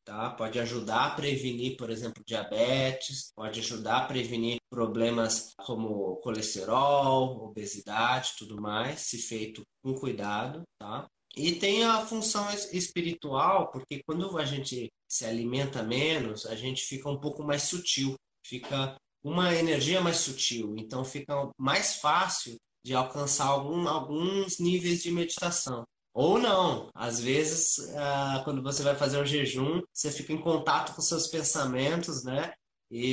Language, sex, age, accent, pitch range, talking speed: Portuguese, male, 20-39, Brazilian, 120-150 Hz, 135 wpm